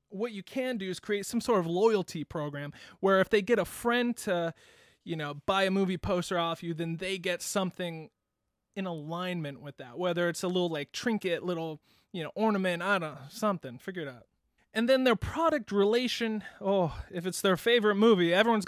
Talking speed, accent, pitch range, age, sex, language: 200 wpm, American, 165-220 Hz, 20-39, male, English